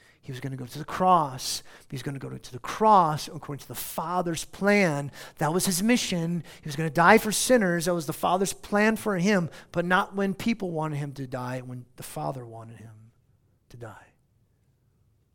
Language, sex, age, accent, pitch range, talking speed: English, male, 50-69, American, 125-180 Hz, 210 wpm